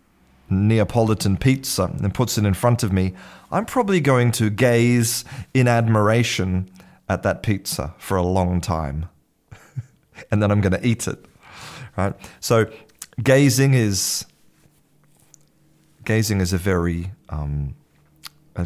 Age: 30-49